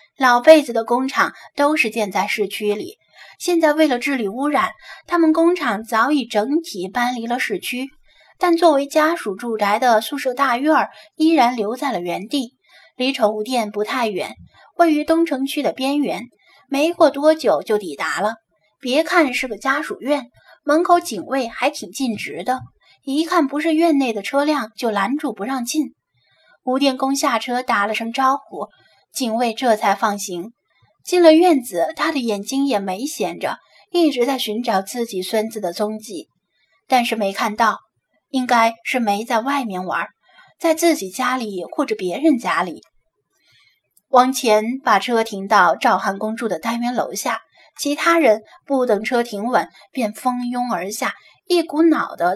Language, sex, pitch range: Chinese, female, 220-290 Hz